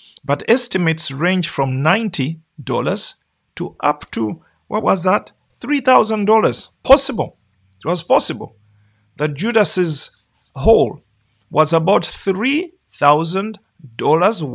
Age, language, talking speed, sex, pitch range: 50-69, English, 90 wpm, male, 135-205 Hz